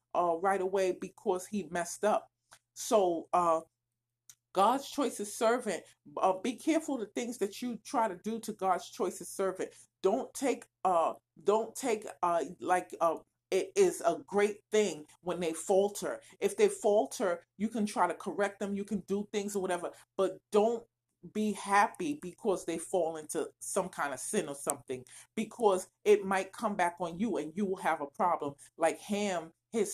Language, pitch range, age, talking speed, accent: English, 170-215 Hz, 40-59, 180 wpm, American